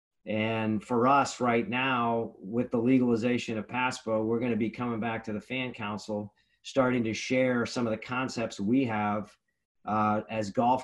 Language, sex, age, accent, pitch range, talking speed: English, male, 40-59, American, 110-130 Hz, 170 wpm